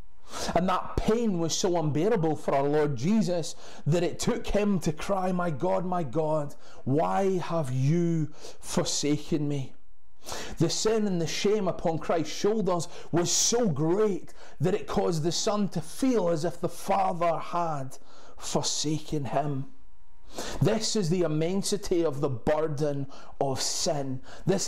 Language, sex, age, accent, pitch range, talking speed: English, male, 30-49, British, 150-195 Hz, 145 wpm